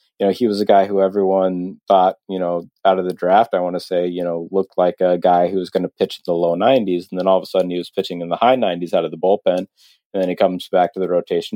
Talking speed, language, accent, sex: 305 wpm, English, American, male